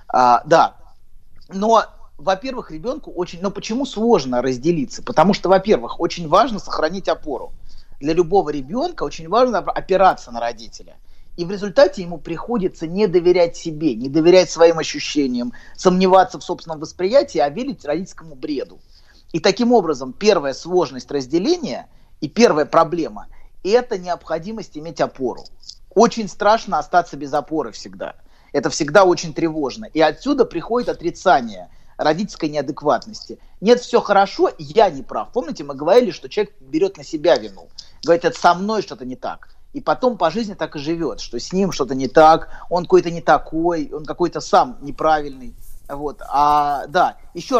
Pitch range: 155-210 Hz